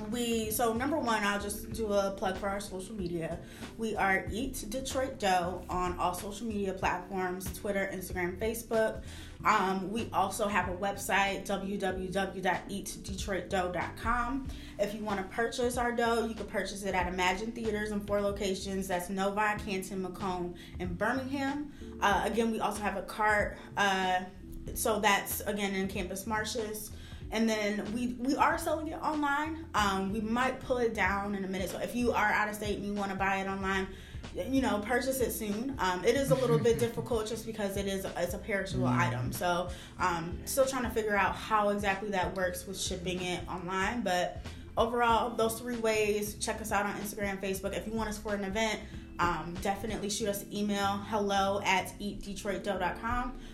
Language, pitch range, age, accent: English, 190-225 Hz, 20-39, American